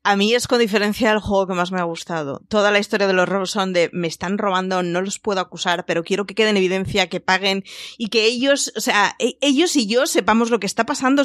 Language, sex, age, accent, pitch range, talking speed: Spanish, female, 20-39, Spanish, 185-225 Hz, 260 wpm